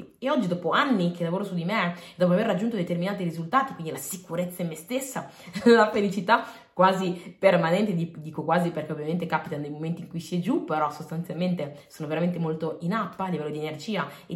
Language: Italian